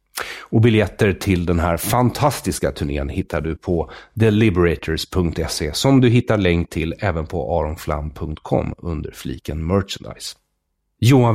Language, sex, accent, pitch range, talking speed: English, male, Swedish, 85-115 Hz, 120 wpm